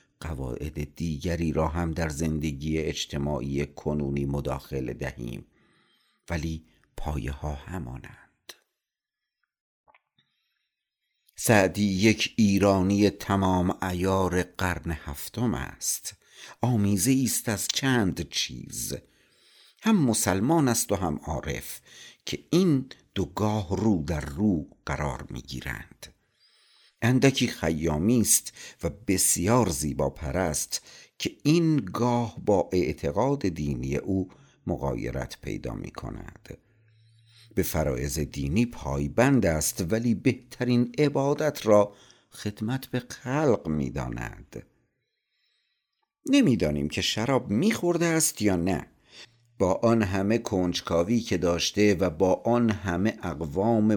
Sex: male